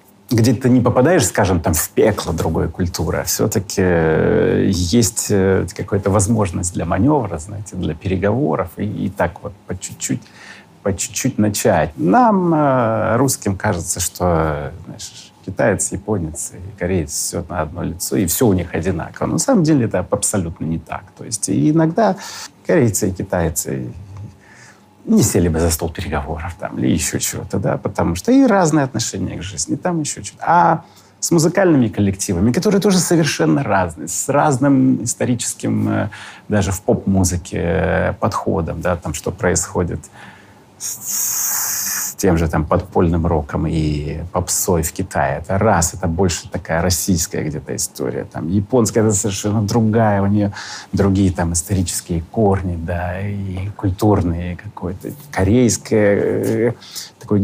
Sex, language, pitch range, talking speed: male, Russian, 90-115 Hz, 140 wpm